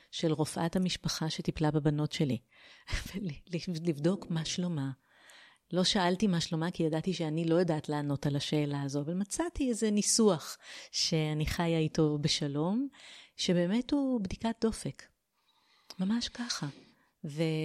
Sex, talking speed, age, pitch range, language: female, 125 wpm, 30-49, 155-195 Hz, Hebrew